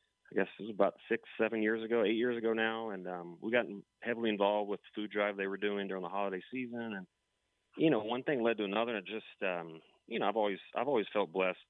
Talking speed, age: 255 wpm, 30-49